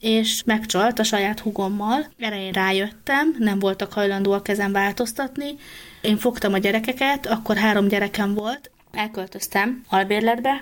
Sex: female